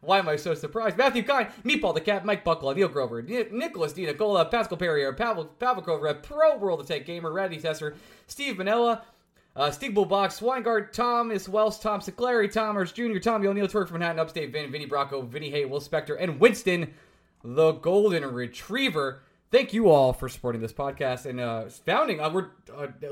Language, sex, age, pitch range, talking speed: English, male, 20-39, 140-205 Hz, 180 wpm